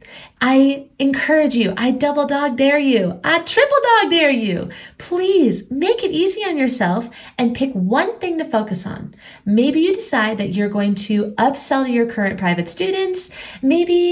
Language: English